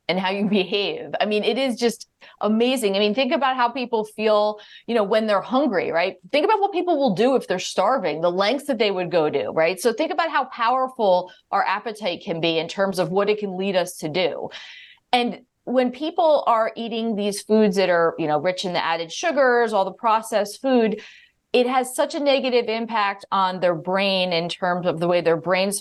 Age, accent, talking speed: 30-49, American, 220 wpm